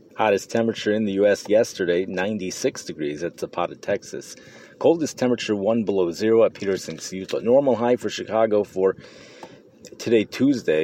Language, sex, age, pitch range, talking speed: English, male, 30-49, 85-115 Hz, 145 wpm